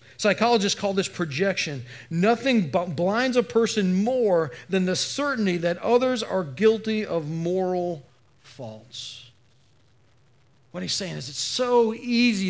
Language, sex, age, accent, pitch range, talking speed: English, male, 40-59, American, 140-215 Hz, 125 wpm